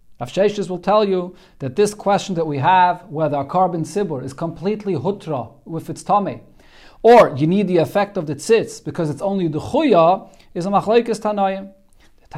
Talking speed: 180 wpm